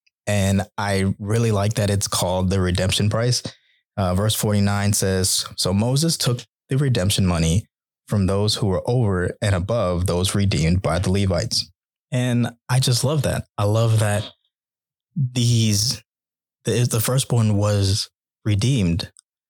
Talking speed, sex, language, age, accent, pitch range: 145 wpm, male, English, 20-39, American, 95-110 Hz